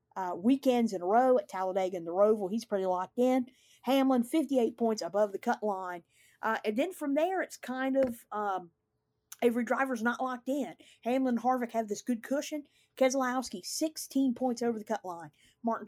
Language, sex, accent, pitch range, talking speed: English, female, American, 195-255 Hz, 190 wpm